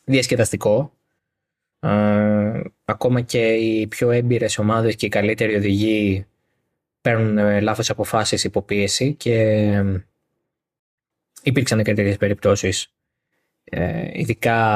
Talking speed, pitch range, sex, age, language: 85 wpm, 105-135 Hz, male, 20-39, Greek